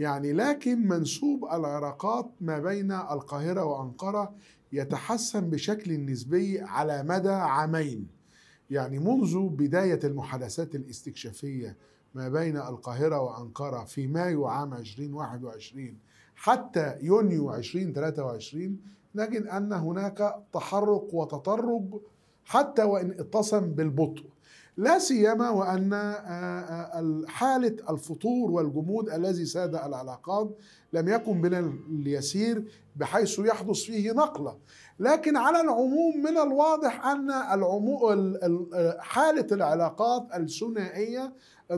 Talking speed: 95 wpm